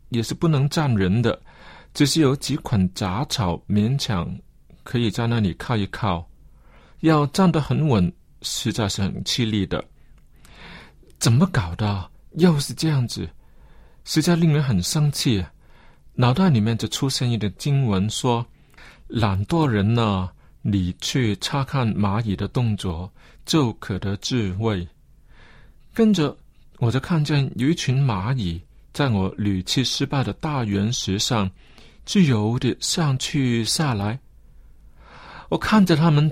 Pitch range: 100-150 Hz